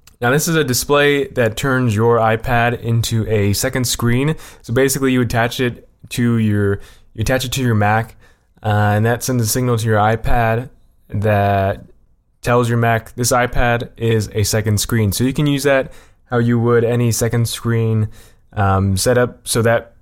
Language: English